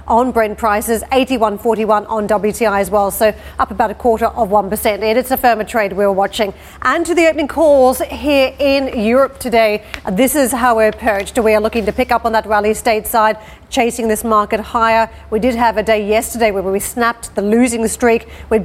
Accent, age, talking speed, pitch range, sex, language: Australian, 40-59, 205 wpm, 210-235 Hz, female, English